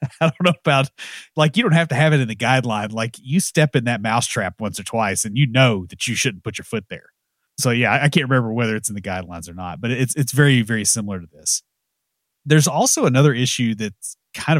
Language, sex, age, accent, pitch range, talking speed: English, male, 30-49, American, 100-130 Hz, 245 wpm